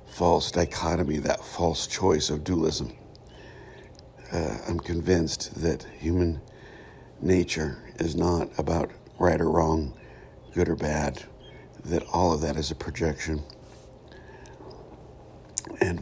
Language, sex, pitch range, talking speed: English, male, 80-90 Hz, 110 wpm